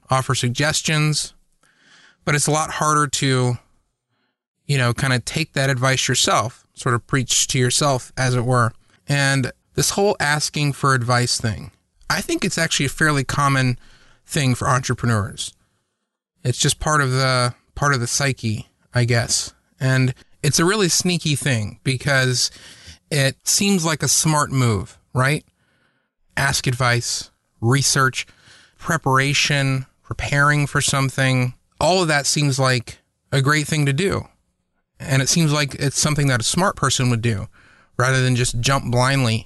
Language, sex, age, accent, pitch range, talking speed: English, male, 30-49, American, 125-150 Hz, 150 wpm